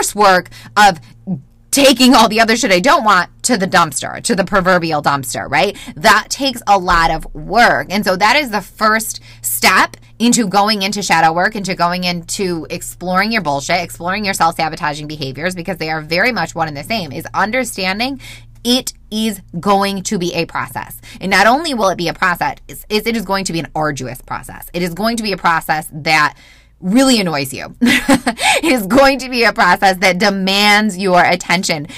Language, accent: English, American